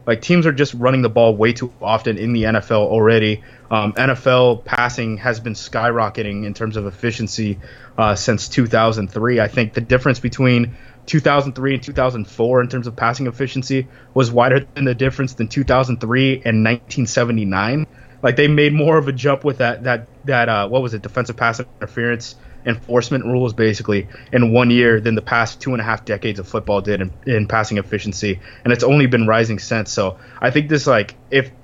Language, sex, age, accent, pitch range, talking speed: English, male, 20-39, American, 110-130 Hz, 190 wpm